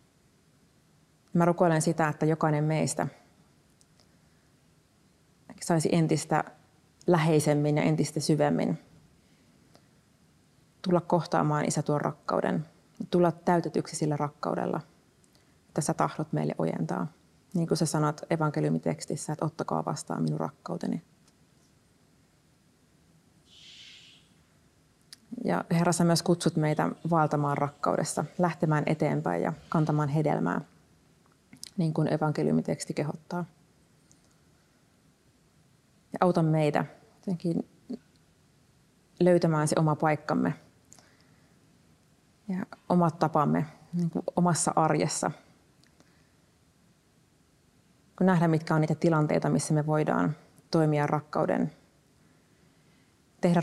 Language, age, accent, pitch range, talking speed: Finnish, 30-49, native, 150-170 Hz, 85 wpm